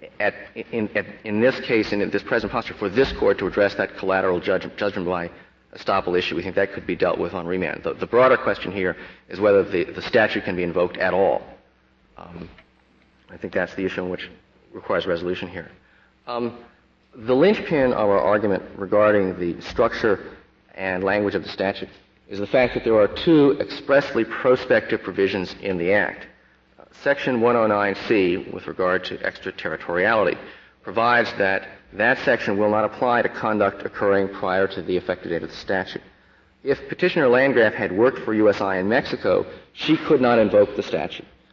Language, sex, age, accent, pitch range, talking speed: English, male, 50-69, American, 90-110 Hz, 170 wpm